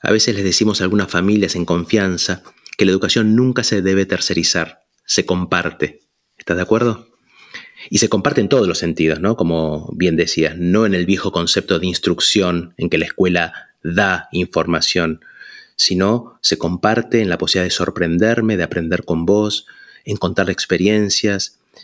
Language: Spanish